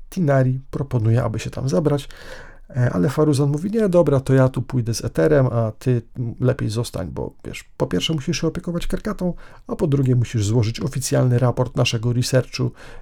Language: Polish